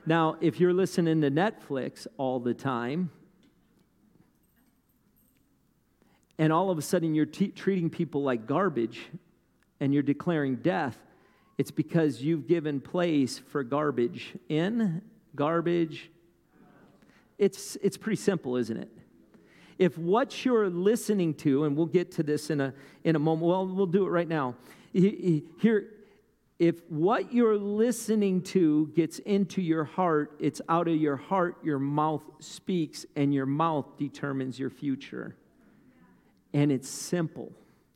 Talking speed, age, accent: 140 wpm, 50-69, American